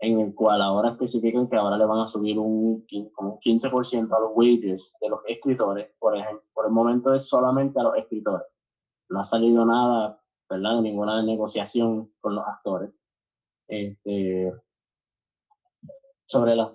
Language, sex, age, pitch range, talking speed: Spanish, male, 20-39, 110-130 Hz, 150 wpm